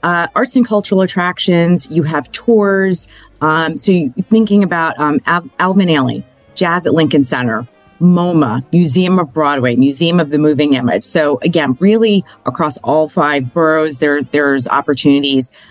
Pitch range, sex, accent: 135-170 Hz, female, American